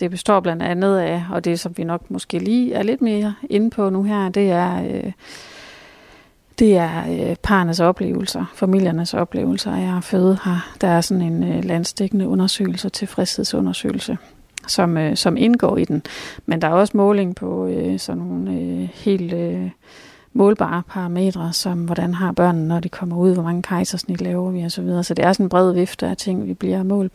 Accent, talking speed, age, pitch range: native, 195 wpm, 30-49, 175-205 Hz